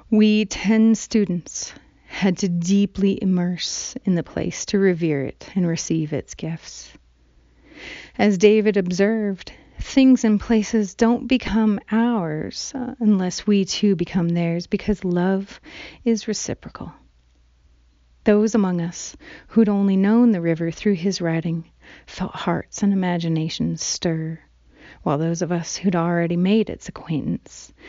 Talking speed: 130 wpm